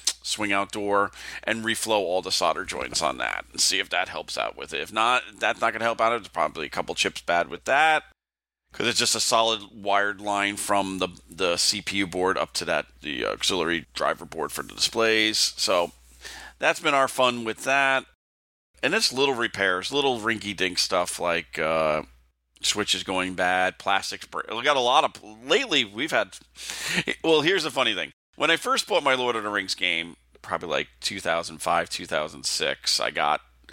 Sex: male